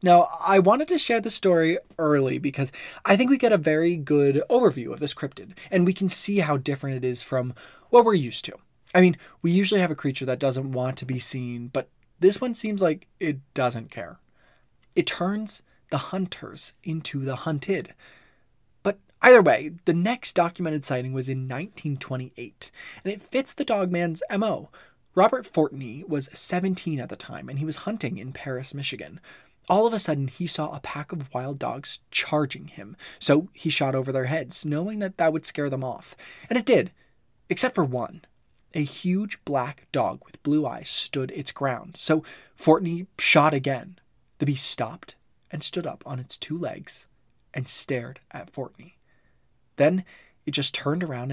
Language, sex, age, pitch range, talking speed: English, male, 20-39, 135-180 Hz, 180 wpm